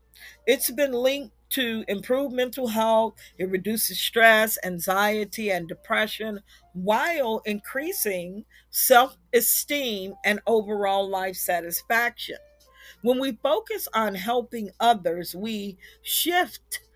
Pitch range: 195-260 Hz